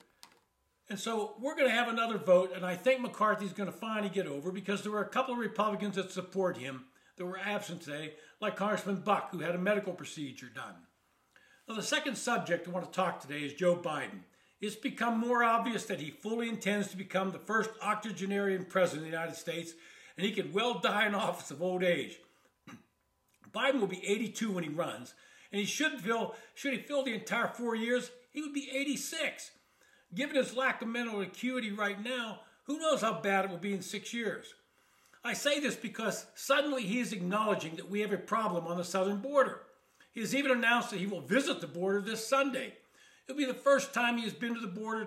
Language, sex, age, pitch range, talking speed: English, male, 60-79, 185-240 Hz, 215 wpm